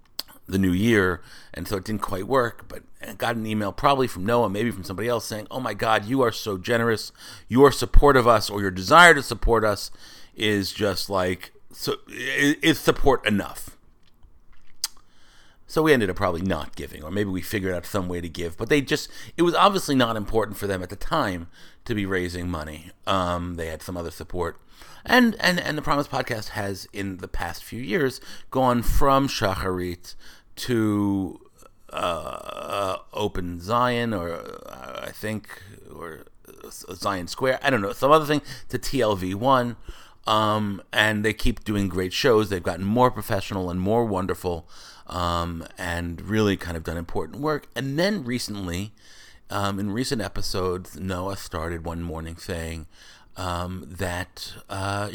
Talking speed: 170 wpm